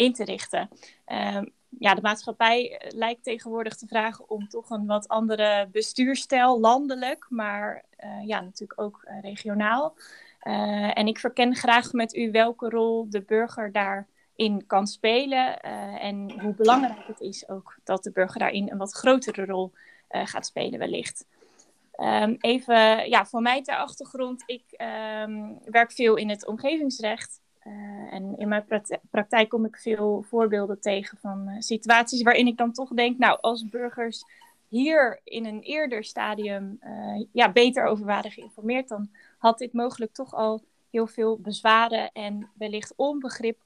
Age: 20-39